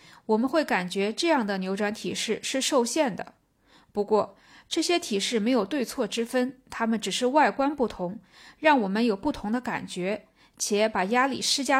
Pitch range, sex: 205-265 Hz, female